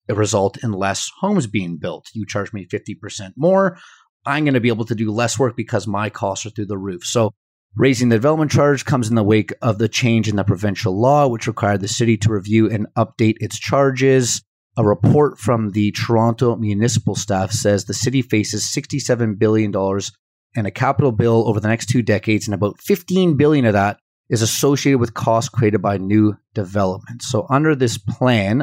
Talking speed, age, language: 195 wpm, 30-49, English